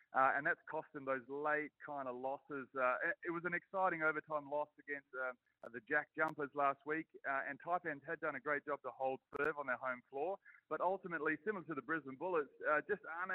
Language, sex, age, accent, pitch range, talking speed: English, male, 30-49, Australian, 140-170 Hz, 225 wpm